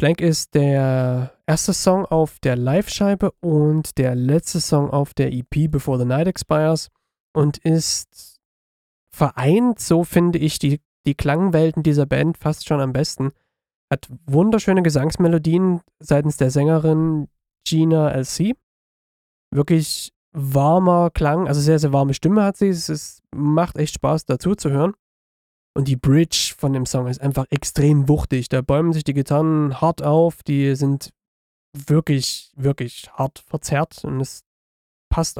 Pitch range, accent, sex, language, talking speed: 140-165 Hz, German, male, German, 145 wpm